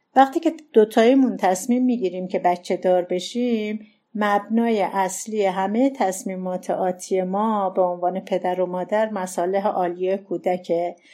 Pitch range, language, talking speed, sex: 180-215 Hz, Persian, 130 wpm, female